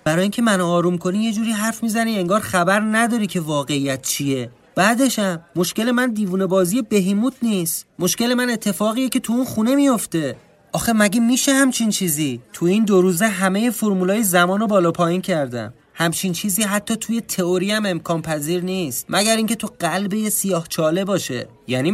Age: 30-49